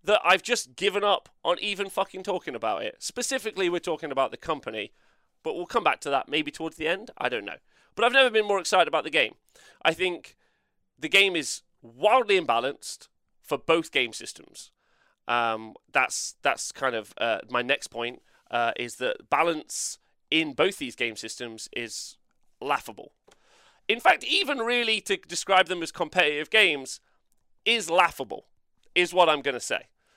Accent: British